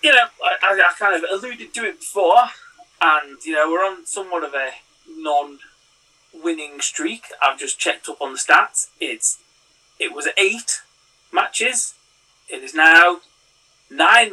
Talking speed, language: 150 wpm, English